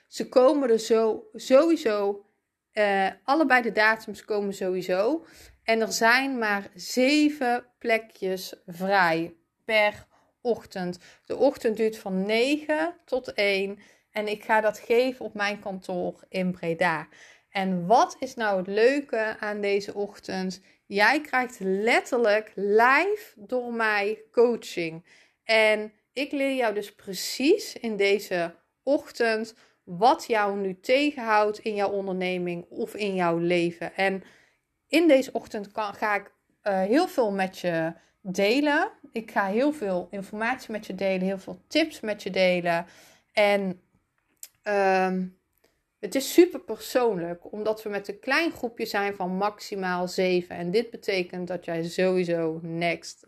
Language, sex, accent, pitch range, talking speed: Dutch, female, Dutch, 190-235 Hz, 135 wpm